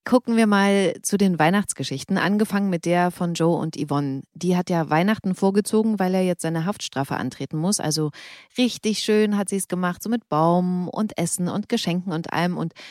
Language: German